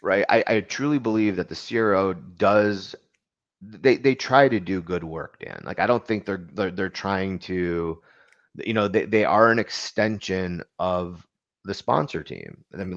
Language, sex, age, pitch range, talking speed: English, male, 30-49, 90-100 Hz, 175 wpm